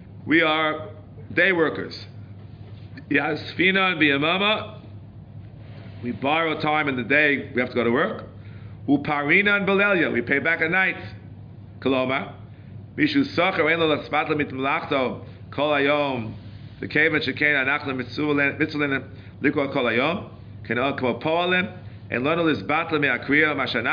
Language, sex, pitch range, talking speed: English, male, 110-160 Hz, 80 wpm